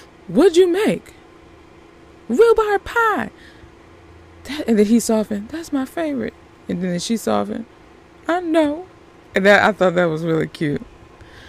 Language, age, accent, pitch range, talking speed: English, 20-39, American, 170-240 Hz, 140 wpm